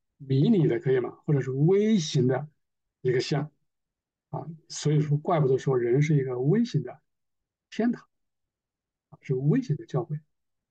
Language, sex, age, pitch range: Chinese, male, 50-69, 135-170 Hz